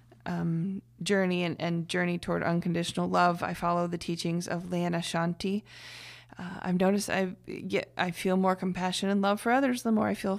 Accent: American